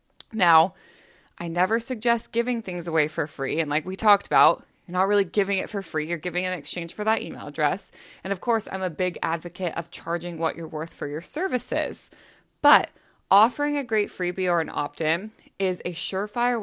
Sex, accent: female, American